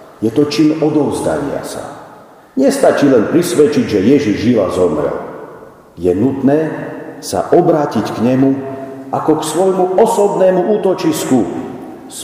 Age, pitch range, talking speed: 50-69, 145-185 Hz, 125 wpm